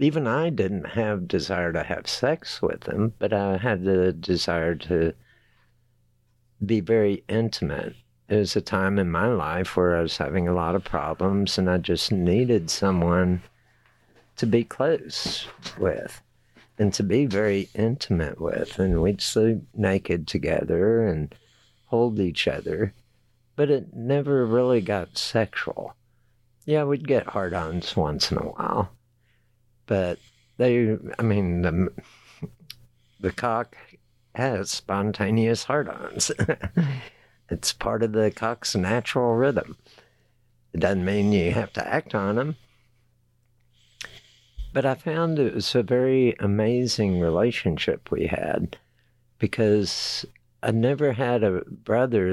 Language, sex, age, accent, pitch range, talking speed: English, male, 60-79, American, 95-120 Hz, 130 wpm